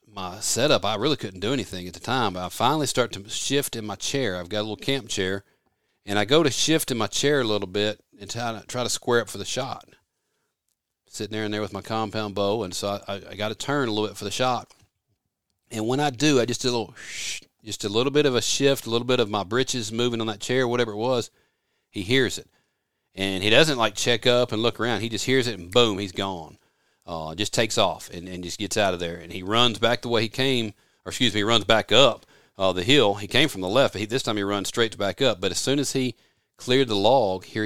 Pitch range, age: 95-120 Hz, 40-59